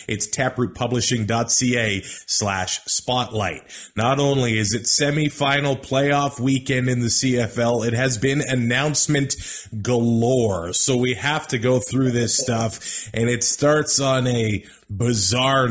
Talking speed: 125 wpm